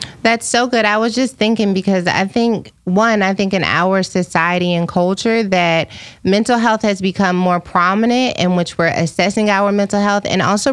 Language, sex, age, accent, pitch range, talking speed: English, female, 20-39, American, 175-210 Hz, 190 wpm